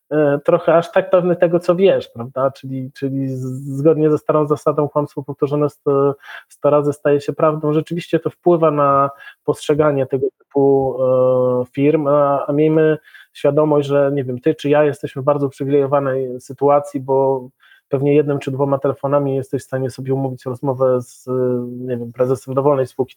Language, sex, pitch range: Polish, male, 135-160 Hz